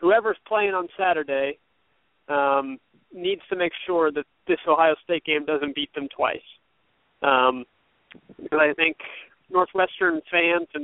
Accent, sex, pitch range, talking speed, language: American, male, 150-180 Hz, 140 wpm, English